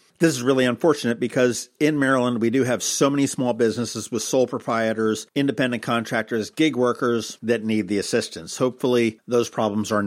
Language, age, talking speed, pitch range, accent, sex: English, 50-69, 175 wpm, 110-140 Hz, American, male